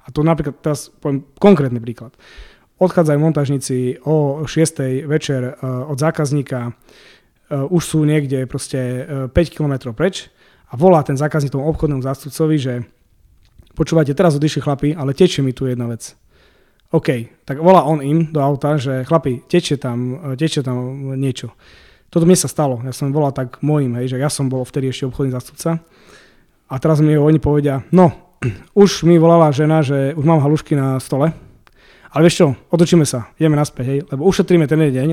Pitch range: 135-160 Hz